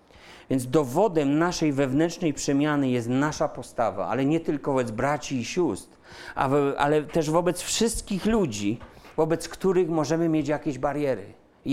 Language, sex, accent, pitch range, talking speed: Polish, male, native, 130-165 Hz, 140 wpm